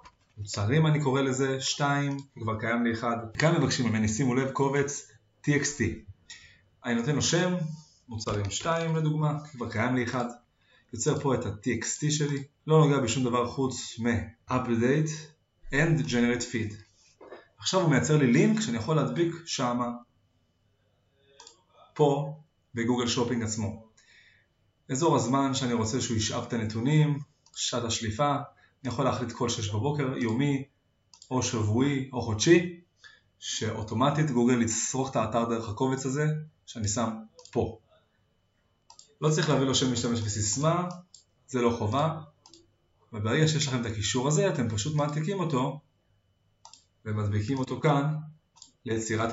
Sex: male